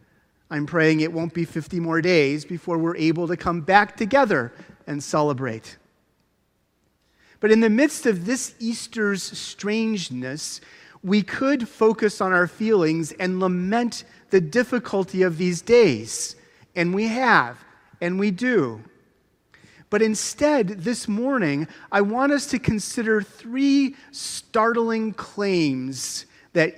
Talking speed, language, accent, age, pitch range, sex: 130 wpm, English, American, 40-59, 175-225 Hz, male